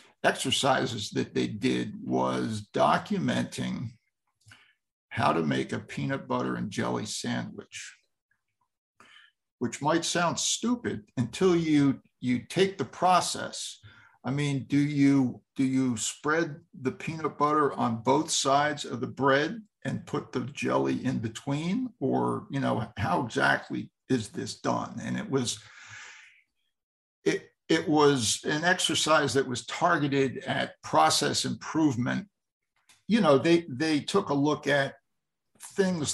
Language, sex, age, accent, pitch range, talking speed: English, male, 60-79, American, 120-155 Hz, 130 wpm